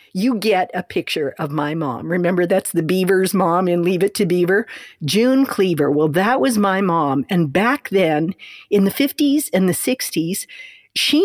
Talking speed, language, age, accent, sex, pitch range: 180 wpm, English, 50-69, American, female, 170-225 Hz